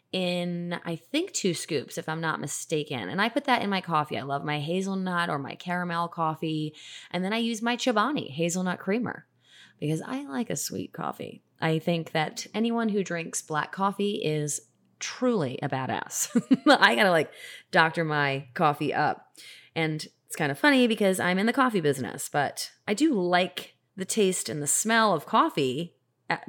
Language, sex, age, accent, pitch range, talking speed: English, female, 20-39, American, 155-205 Hz, 180 wpm